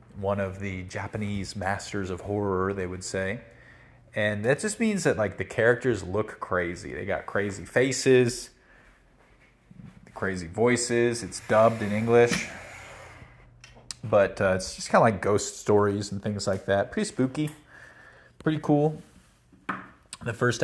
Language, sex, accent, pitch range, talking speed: English, male, American, 95-120 Hz, 140 wpm